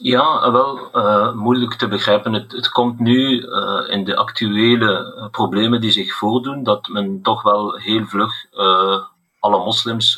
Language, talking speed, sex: Dutch, 160 wpm, male